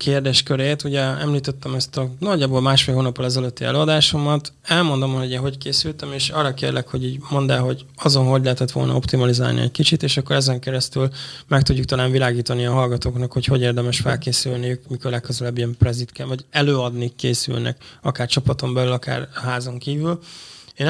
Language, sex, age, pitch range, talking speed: Hungarian, male, 20-39, 125-145 Hz, 170 wpm